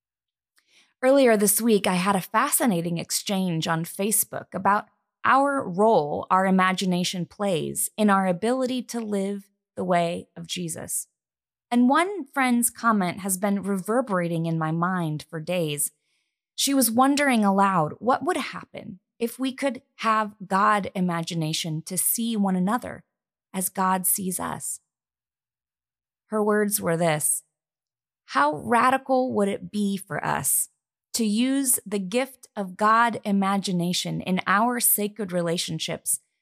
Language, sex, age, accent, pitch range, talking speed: English, female, 20-39, American, 175-235 Hz, 130 wpm